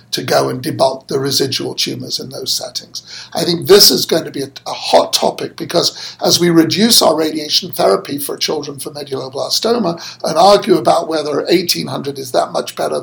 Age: 60-79